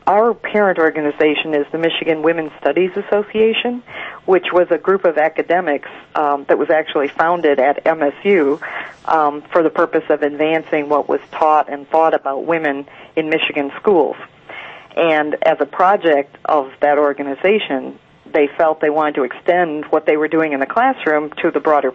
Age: 50-69